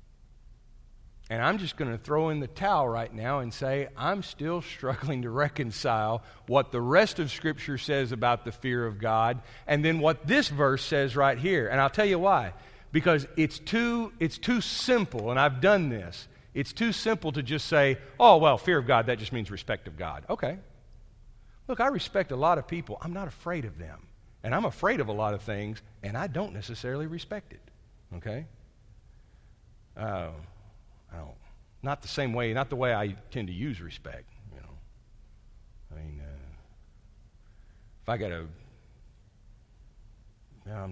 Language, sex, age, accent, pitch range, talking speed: English, male, 50-69, American, 105-145 Hz, 175 wpm